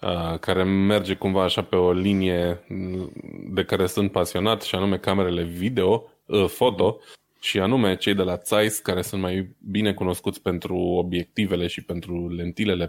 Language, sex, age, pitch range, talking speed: Romanian, male, 20-39, 90-105 Hz, 150 wpm